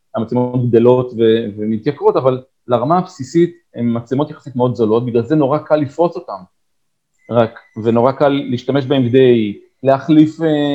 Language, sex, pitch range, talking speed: Hebrew, male, 120-150 Hz, 145 wpm